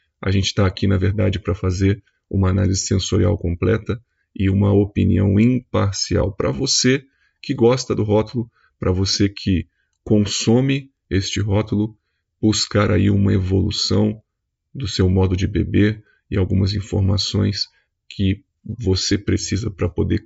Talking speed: 135 wpm